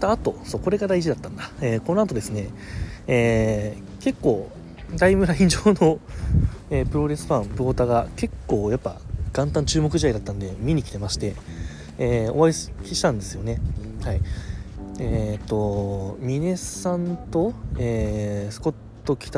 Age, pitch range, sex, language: 20-39, 100-135 Hz, male, Japanese